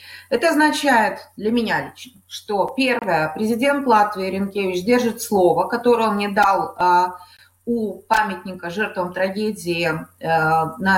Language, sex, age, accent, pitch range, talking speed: Russian, female, 30-49, native, 185-245 Hz, 125 wpm